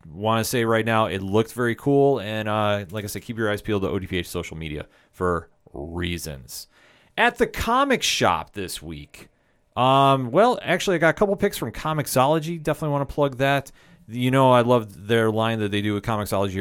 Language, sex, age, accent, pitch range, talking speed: English, male, 30-49, American, 95-125 Hz, 200 wpm